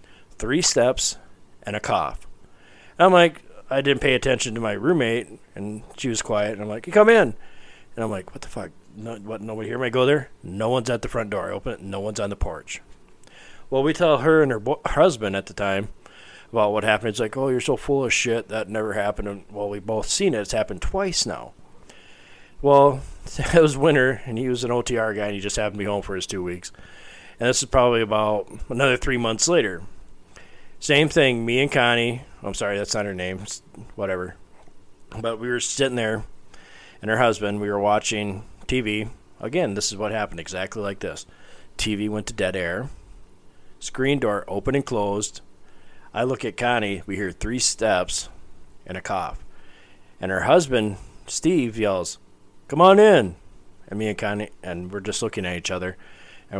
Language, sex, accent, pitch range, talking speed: English, male, American, 100-130 Hz, 200 wpm